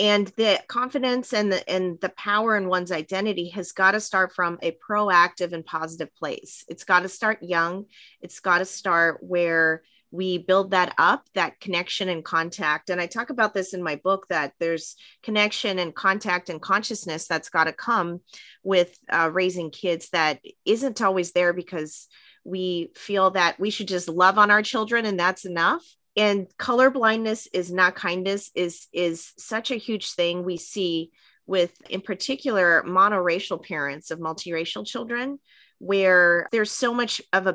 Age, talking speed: 30-49, 170 wpm